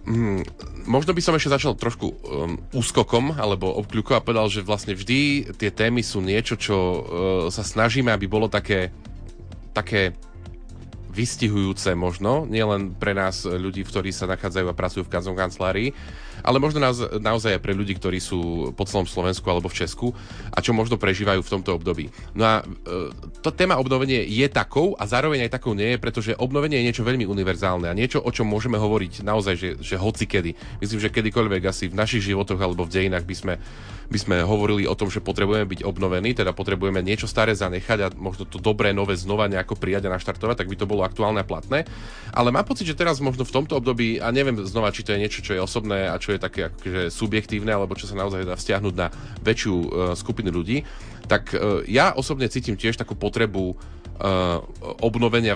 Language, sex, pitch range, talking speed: Slovak, male, 95-115 Hz, 200 wpm